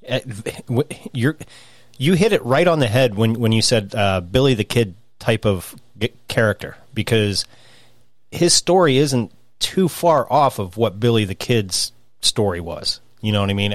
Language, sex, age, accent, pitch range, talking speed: English, male, 30-49, American, 110-130 Hz, 165 wpm